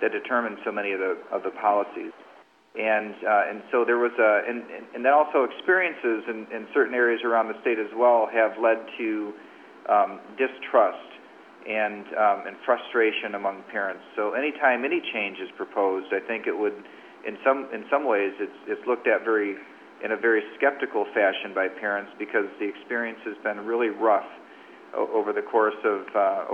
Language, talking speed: English, 180 wpm